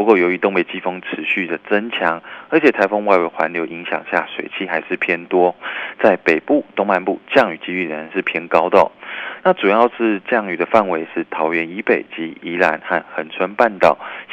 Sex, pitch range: male, 85-115 Hz